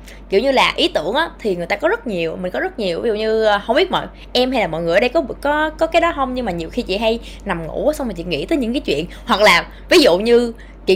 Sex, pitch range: female, 195-275 Hz